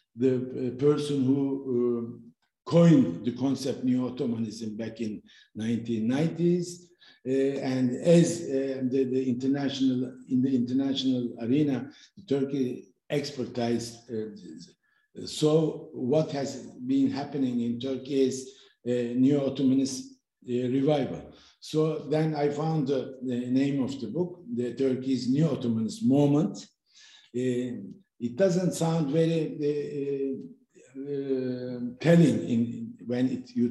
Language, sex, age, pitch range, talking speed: Turkish, male, 60-79, 125-155 Hz, 120 wpm